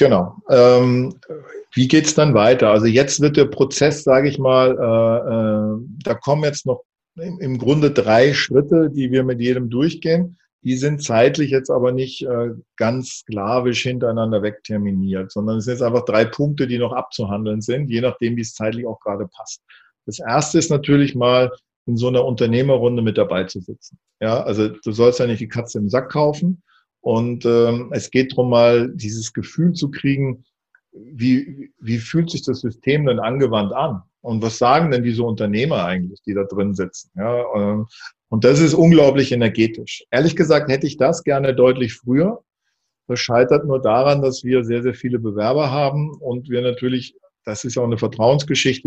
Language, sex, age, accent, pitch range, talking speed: German, male, 40-59, German, 115-140 Hz, 175 wpm